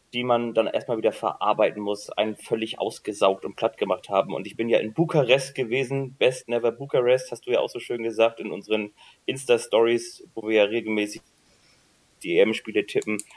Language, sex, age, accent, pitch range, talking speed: German, male, 30-49, German, 105-125 Hz, 185 wpm